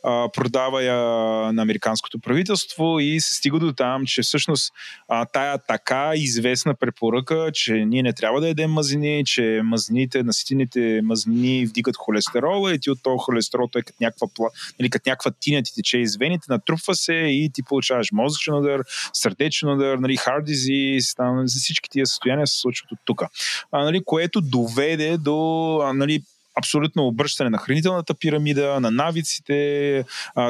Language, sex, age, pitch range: Bulgarian, male, 20-39, 125-155 Hz